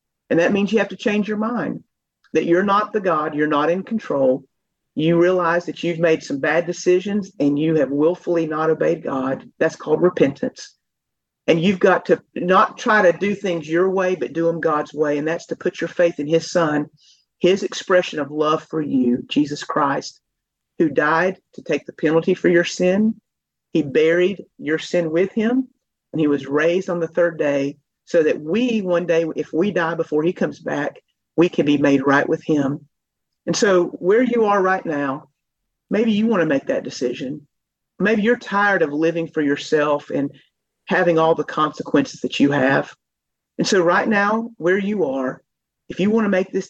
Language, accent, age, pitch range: English, American, 40-59, 155-190 Hz